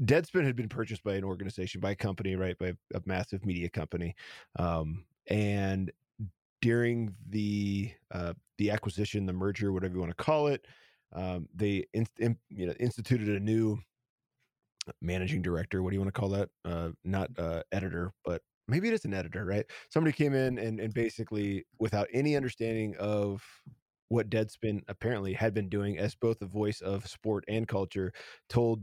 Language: English